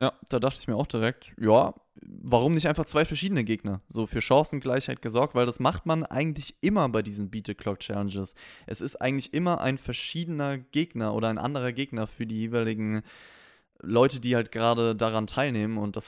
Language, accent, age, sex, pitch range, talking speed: German, German, 20-39, male, 115-145 Hz, 195 wpm